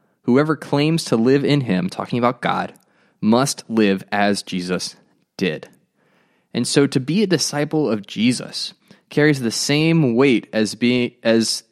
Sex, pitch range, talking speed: male, 105-140 Hz, 150 wpm